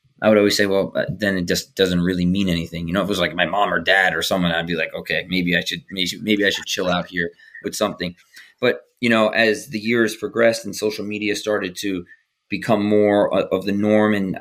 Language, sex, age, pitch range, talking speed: English, male, 20-39, 95-115 Hz, 240 wpm